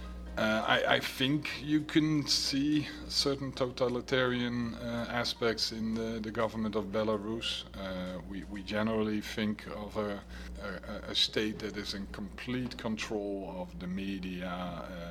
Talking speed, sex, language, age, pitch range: 135 wpm, male, English, 30-49, 90-120 Hz